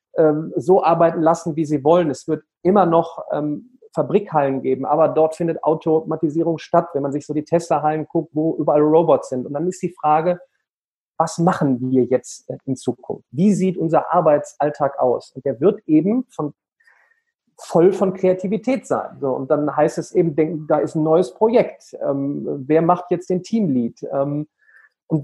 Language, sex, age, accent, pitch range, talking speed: German, male, 40-59, German, 155-185 Hz, 165 wpm